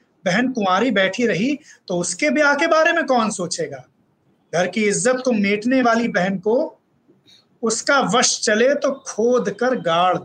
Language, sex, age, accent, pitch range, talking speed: Hindi, male, 30-49, native, 185-260 Hz, 160 wpm